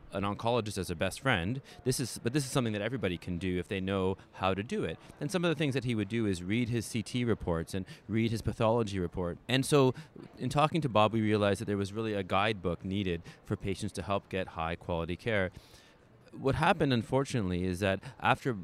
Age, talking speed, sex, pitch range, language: 30-49, 230 wpm, male, 95-120 Hz, English